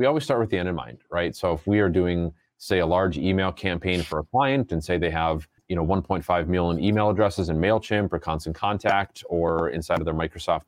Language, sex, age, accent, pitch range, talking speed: English, male, 30-49, American, 80-95 Hz, 225 wpm